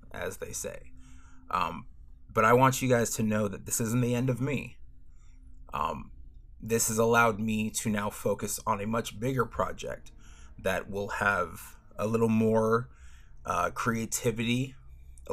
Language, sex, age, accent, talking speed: English, male, 30-49, American, 155 wpm